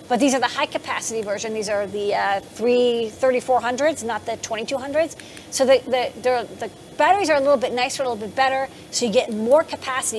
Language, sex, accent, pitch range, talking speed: English, female, American, 225-270 Hz, 205 wpm